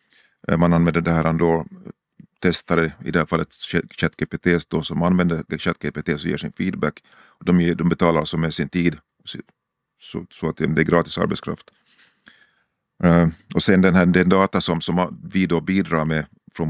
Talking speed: 145 wpm